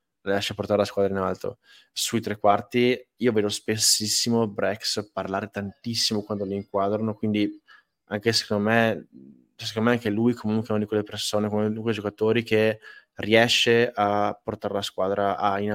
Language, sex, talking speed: Italian, male, 160 wpm